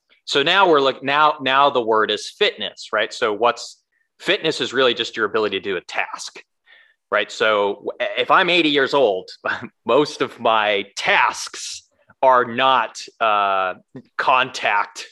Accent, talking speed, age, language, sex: American, 150 wpm, 30-49, English, male